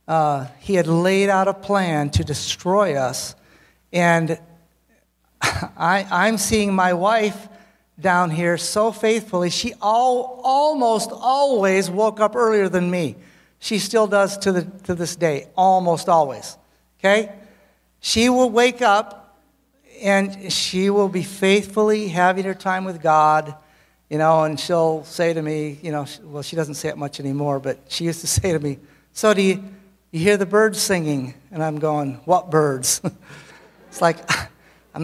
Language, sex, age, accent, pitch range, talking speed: English, male, 60-79, American, 170-215 Hz, 160 wpm